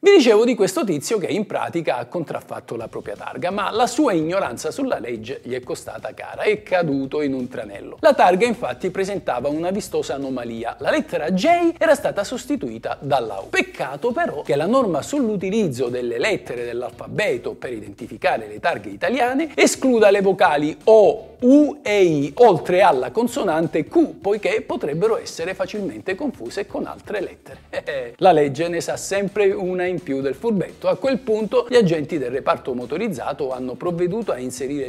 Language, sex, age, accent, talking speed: Italian, male, 50-69, native, 170 wpm